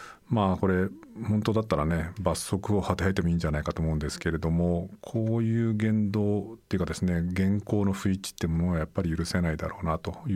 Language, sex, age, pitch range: Japanese, male, 50-69, 85-100 Hz